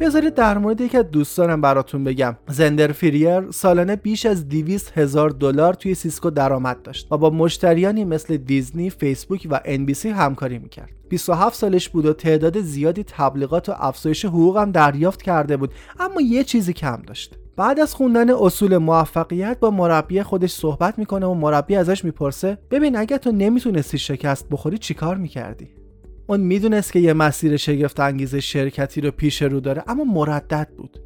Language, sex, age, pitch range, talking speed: Persian, male, 30-49, 145-195 Hz, 165 wpm